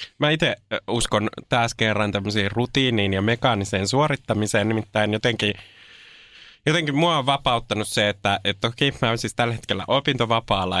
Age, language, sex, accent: 20-39, Finnish, male, native